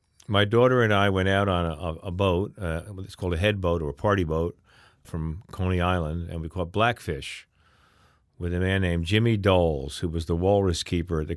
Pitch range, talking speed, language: 85-105 Hz, 210 wpm, English